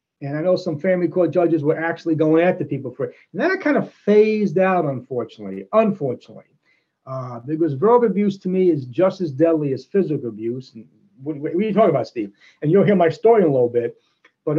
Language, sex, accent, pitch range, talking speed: English, male, American, 145-200 Hz, 220 wpm